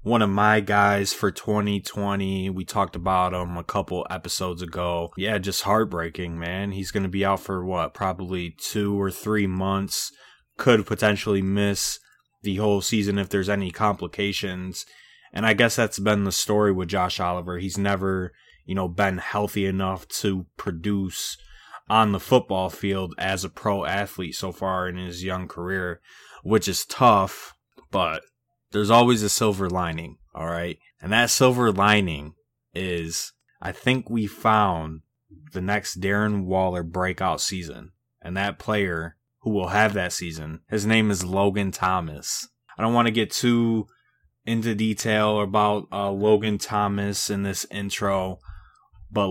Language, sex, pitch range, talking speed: English, male, 90-105 Hz, 155 wpm